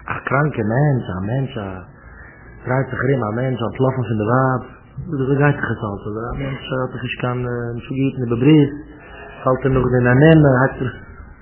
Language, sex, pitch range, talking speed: English, male, 125-175 Hz, 135 wpm